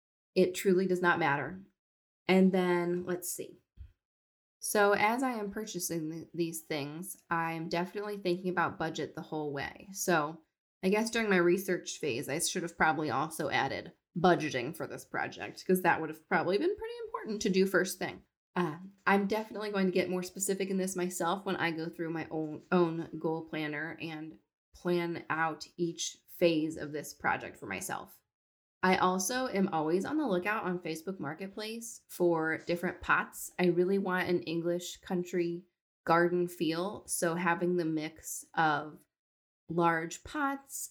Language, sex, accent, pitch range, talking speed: English, female, American, 165-195 Hz, 165 wpm